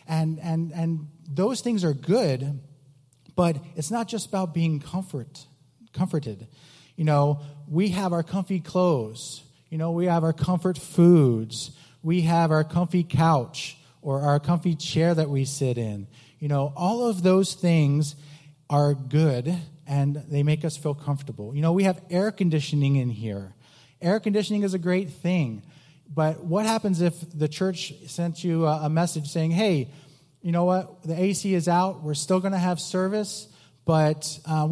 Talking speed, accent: 170 wpm, American